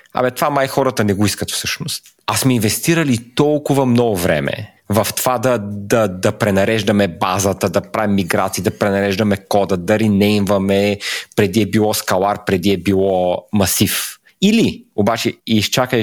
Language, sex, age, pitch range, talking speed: Bulgarian, male, 30-49, 100-140 Hz, 150 wpm